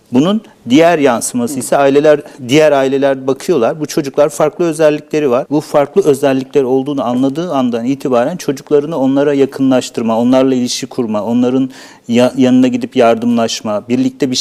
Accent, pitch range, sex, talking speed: native, 125-155 Hz, male, 135 wpm